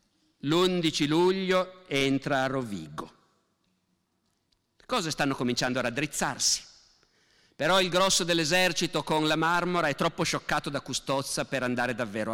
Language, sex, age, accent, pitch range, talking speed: Italian, male, 50-69, native, 145-190 Hz, 125 wpm